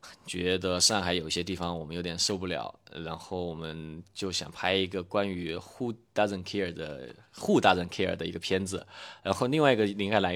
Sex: male